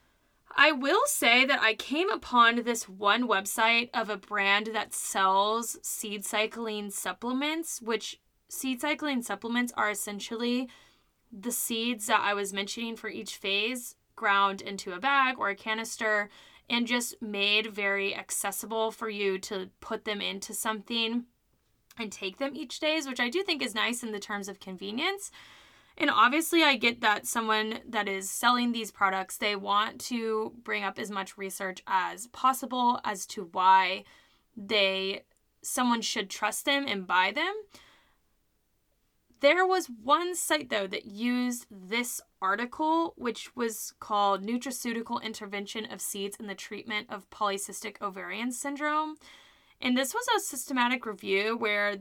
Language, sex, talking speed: English, female, 150 wpm